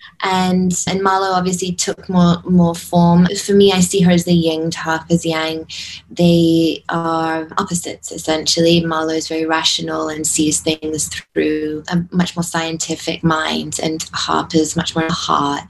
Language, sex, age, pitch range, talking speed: English, female, 20-39, 155-180 Hz, 155 wpm